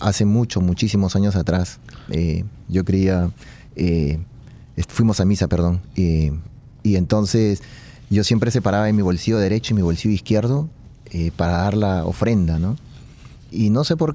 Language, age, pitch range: Spanish, 30-49, 95-125 Hz